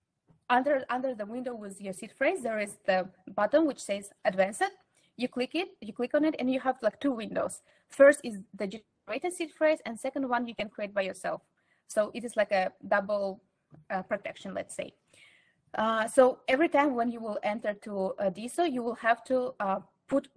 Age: 20-39